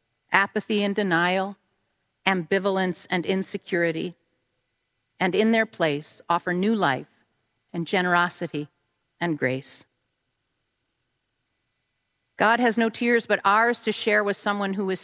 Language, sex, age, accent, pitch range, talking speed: English, female, 50-69, American, 160-215 Hz, 115 wpm